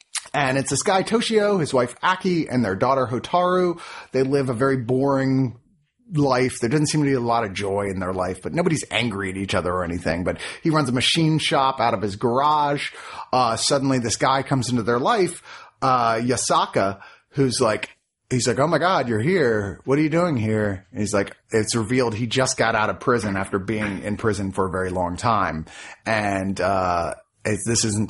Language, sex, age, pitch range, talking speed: English, male, 30-49, 105-145 Hz, 205 wpm